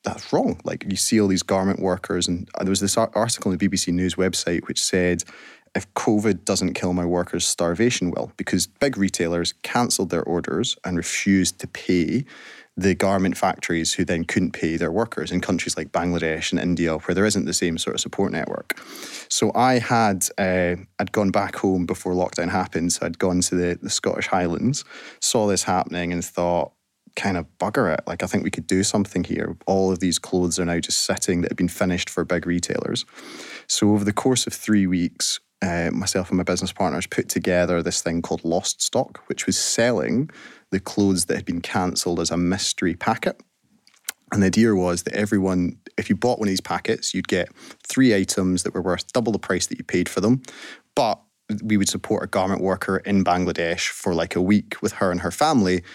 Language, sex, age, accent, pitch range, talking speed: English, male, 20-39, British, 90-100 Hz, 205 wpm